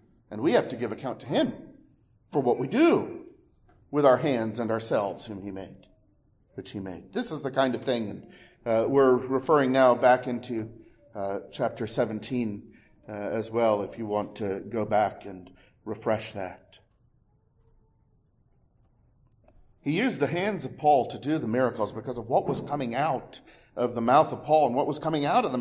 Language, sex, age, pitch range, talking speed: English, male, 40-59, 115-195 Hz, 185 wpm